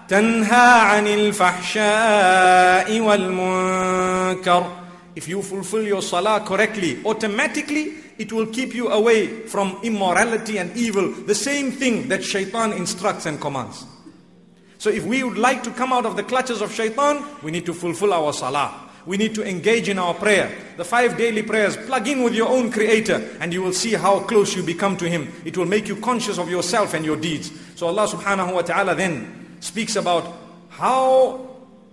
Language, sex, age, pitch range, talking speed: English, male, 50-69, 185-245 Hz, 175 wpm